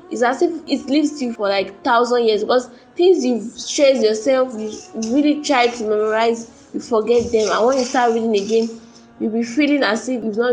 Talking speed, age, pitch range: 205 wpm, 10-29, 220-275 Hz